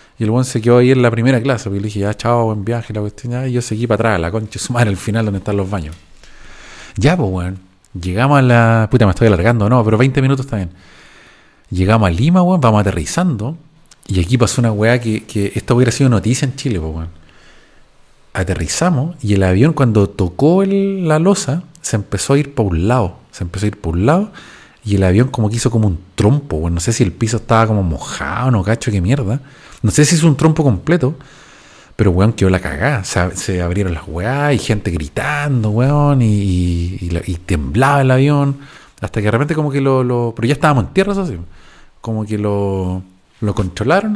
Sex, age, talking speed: male, 40-59, 225 wpm